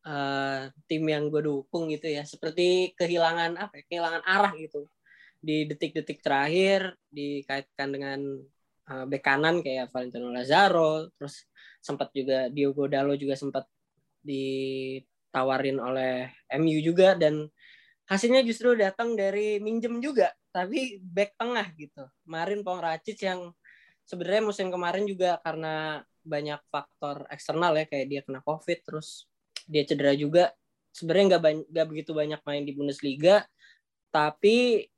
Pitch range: 145-190 Hz